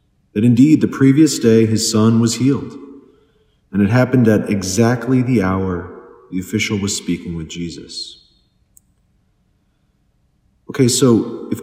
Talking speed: 130 wpm